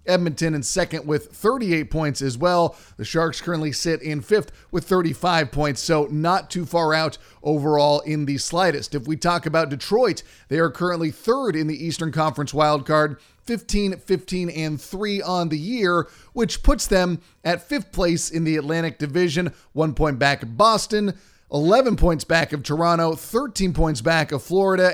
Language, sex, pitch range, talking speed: English, male, 150-185 Hz, 175 wpm